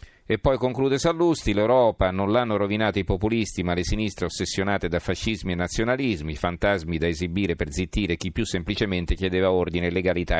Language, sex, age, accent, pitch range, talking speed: Italian, male, 40-59, native, 85-105 Hz, 165 wpm